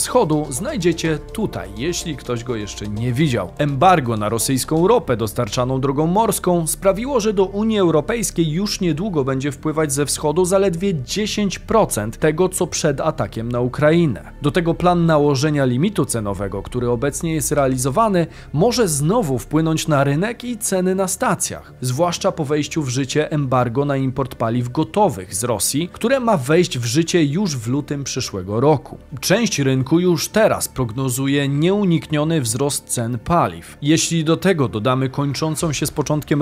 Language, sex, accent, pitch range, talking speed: Polish, male, native, 130-180 Hz, 155 wpm